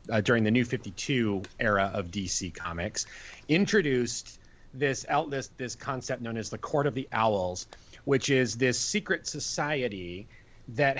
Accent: American